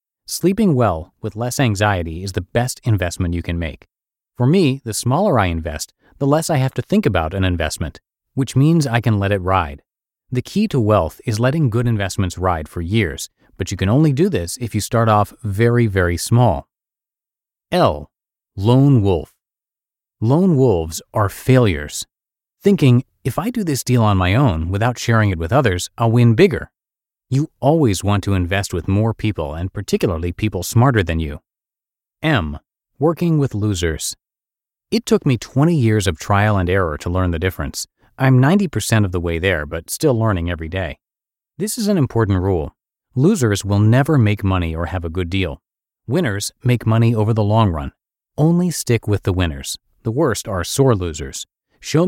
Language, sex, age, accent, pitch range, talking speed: English, male, 30-49, American, 90-130 Hz, 180 wpm